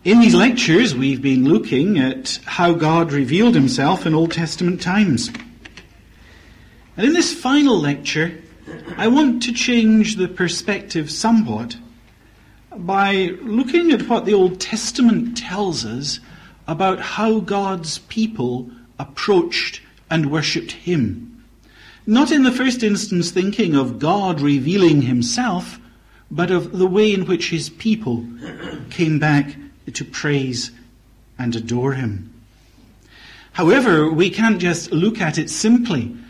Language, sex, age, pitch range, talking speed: English, male, 50-69, 135-200 Hz, 125 wpm